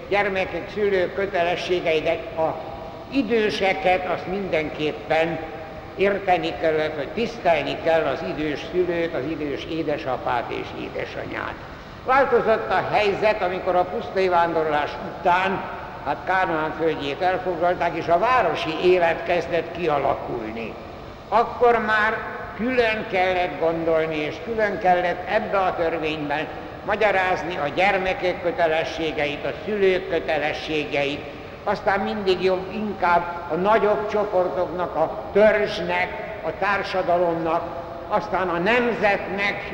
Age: 60-79